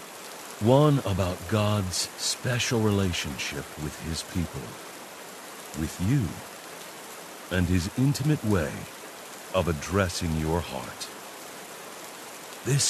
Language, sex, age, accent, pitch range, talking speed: English, male, 60-79, American, 90-115 Hz, 90 wpm